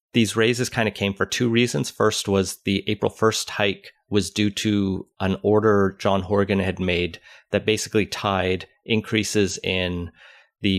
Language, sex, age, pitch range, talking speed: English, male, 30-49, 90-110 Hz, 160 wpm